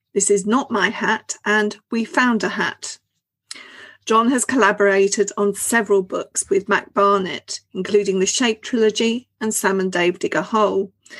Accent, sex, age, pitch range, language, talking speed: British, female, 40-59, 205-255 Hz, English, 160 wpm